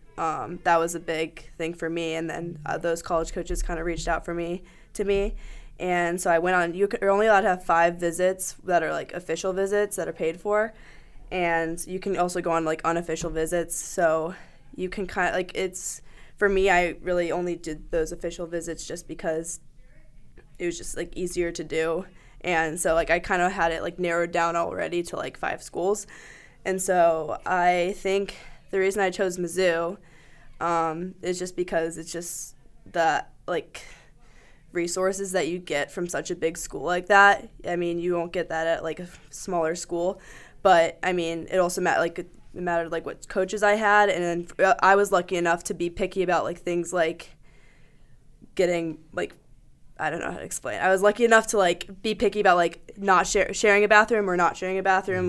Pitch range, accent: 165-190 Hz, American